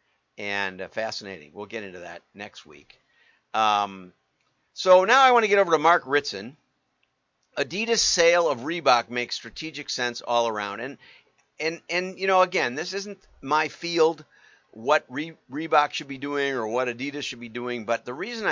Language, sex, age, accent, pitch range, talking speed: English, male, 50-69, American, 115-150 Hz, 170 wpm